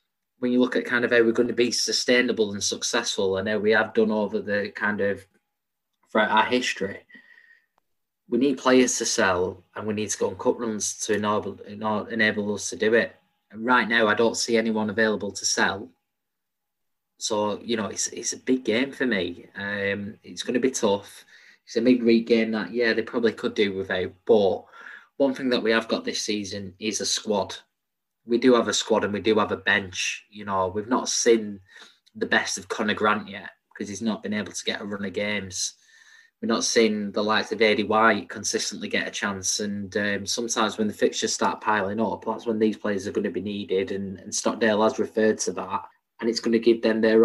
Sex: male